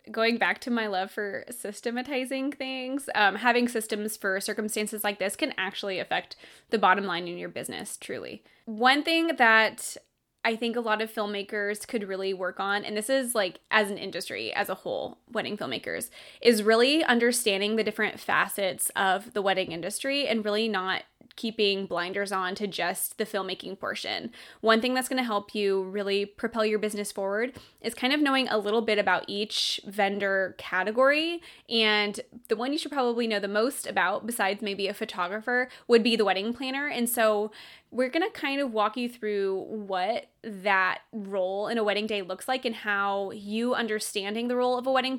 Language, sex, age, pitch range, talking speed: English, female, 20-39, 200-240 Hz, 185 wpm